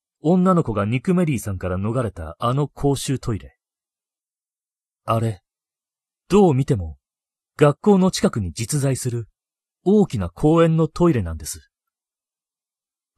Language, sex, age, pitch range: Japanese, male, 40-59, 95-150 Hz